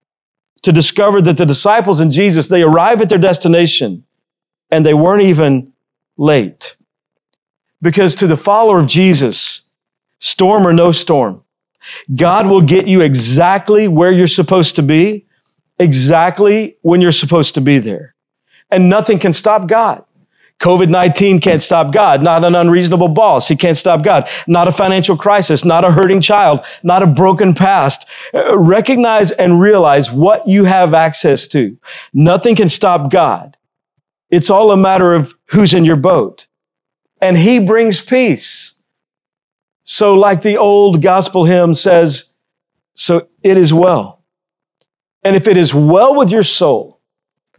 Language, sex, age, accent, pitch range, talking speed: English, male, 50-69, American, 165-200 Hz, 150 wpm